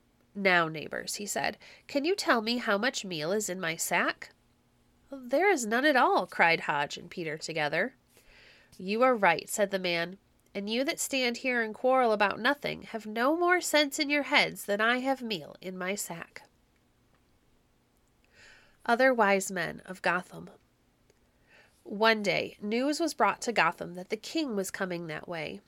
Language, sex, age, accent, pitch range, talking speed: English, female, 30-49, American, 180-250 Hz, 170 wpm